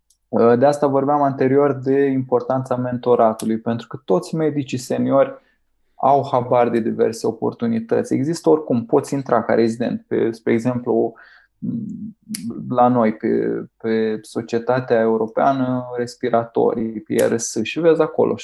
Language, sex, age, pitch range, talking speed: Romanian, male, 20-39, 115-140 Hz, 120 wpm